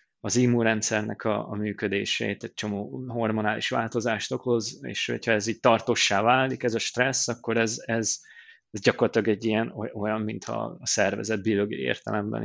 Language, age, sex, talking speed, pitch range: Hungarian, 20-39, male, 155 wpm, 110-125 Hz